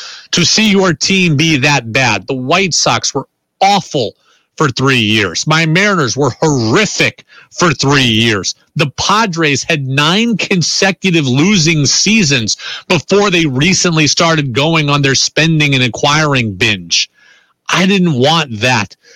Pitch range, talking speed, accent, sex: 120-175 Hz, 140 wpm, American, male